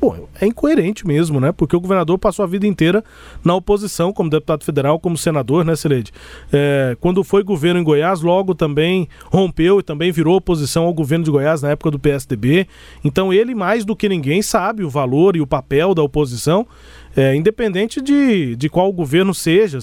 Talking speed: 195 wpm